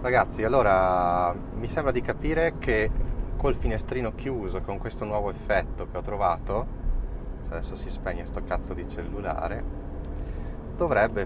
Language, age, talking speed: Italian, 20-39, 135 wpm